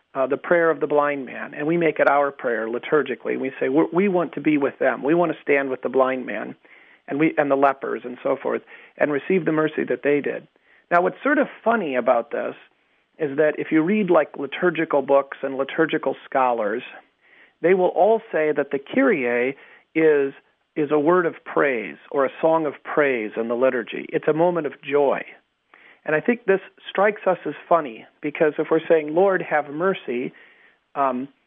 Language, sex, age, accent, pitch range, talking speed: English, male, 40-59, American, 140-175 Hz, 200 wpm